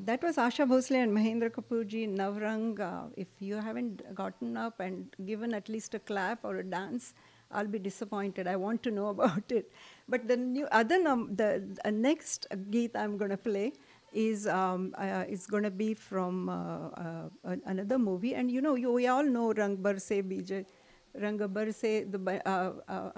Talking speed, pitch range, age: 180 wpm, 200-250 Hz, 50-69